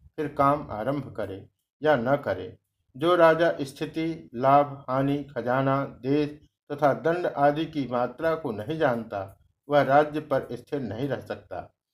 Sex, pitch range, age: male, 125-155 Hz, 60-79